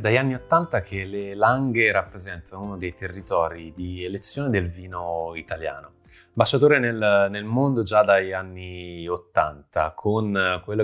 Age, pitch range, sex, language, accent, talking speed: 20-39, 95-130 Hz, male, Italian, native, 140 wpm